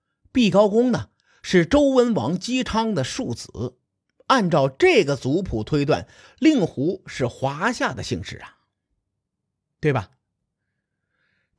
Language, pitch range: Chinese, 115-185 Hz